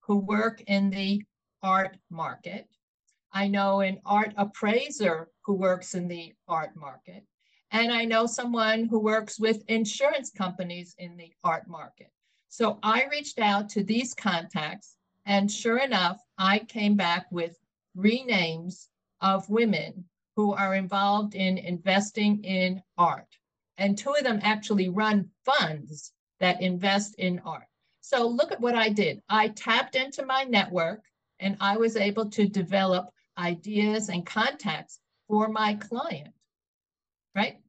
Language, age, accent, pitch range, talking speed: English, 50-69, American, 185-220 Hz, 140 wpm